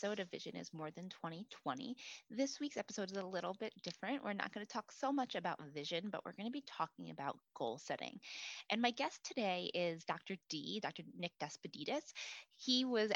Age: 20-39